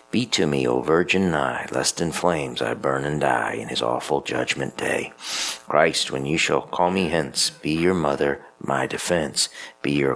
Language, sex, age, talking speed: English, male, 50-69, 190 wpm